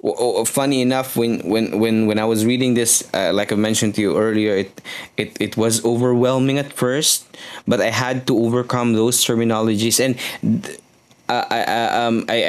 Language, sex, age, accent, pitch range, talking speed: English, male, 20-39, Filipino, 105-125 Hz, 165 wpm